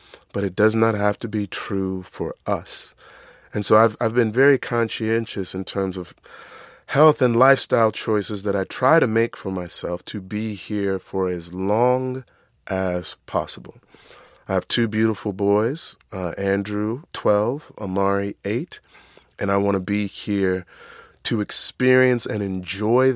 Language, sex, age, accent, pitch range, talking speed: English, male, 30-49, American, 95-115 Hz, 155 wpm